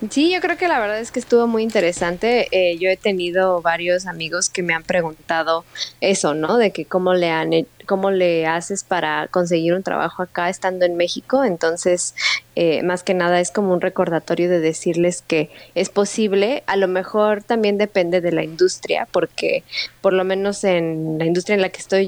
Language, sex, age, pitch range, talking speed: Spanish, female, 20-39, 170-200 Hz, 195 wpm